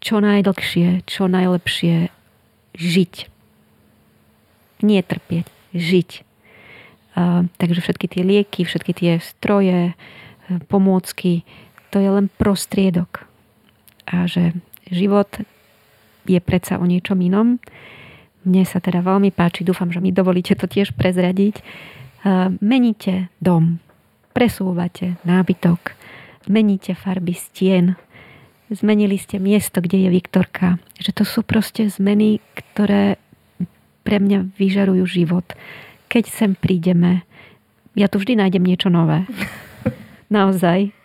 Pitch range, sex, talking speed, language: 175-200 Hz, female, 105 wpm, Slovak